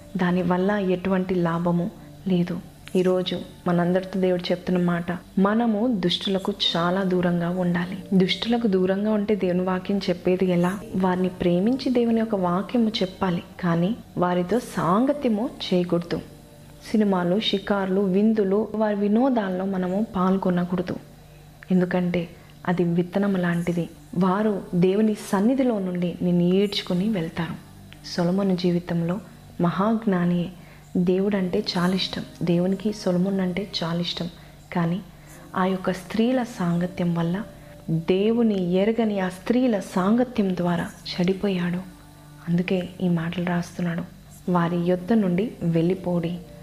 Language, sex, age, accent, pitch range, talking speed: Telugu, female, 20-39, native, 175-200 Hz, 105 wpm